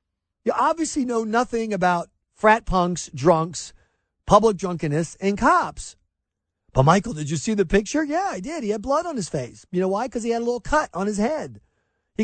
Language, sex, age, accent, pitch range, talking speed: English, male, 40-59, American, 135-220 Hz, 200 wpm